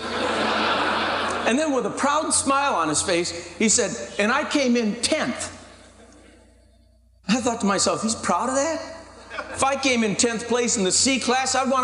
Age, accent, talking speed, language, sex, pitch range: 50-69, American, 180 wpm, English, male, 195-260 Hz